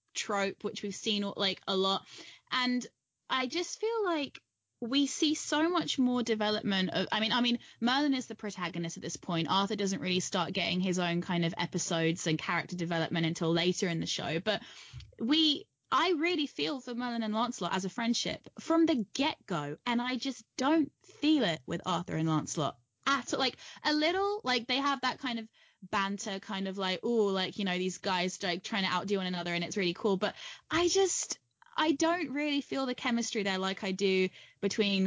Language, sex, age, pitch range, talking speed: English, female, 10-29, 180-245 Hz, 200 wpm